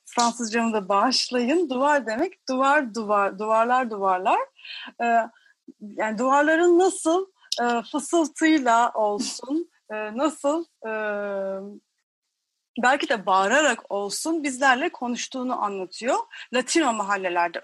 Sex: female